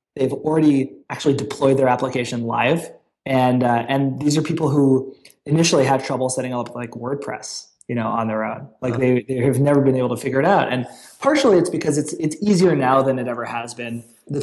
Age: 20-39